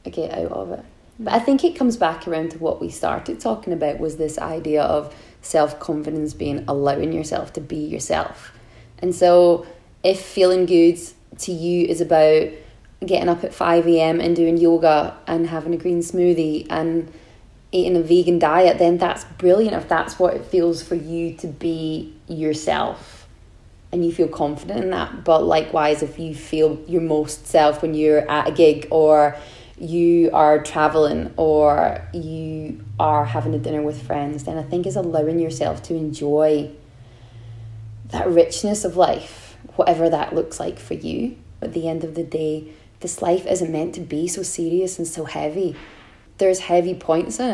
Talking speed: 175 wpm